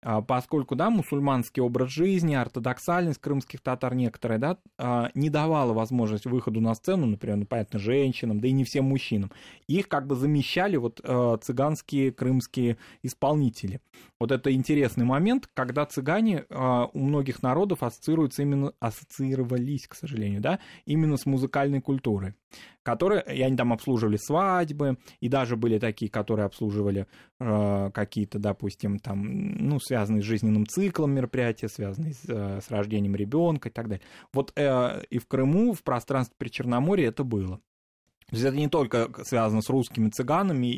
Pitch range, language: 115-145 Hz, Russian